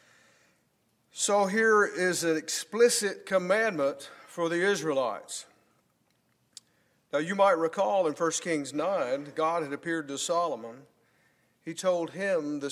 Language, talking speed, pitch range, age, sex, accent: English, 125 wpm, 150-195 Hz, 50-69, male, American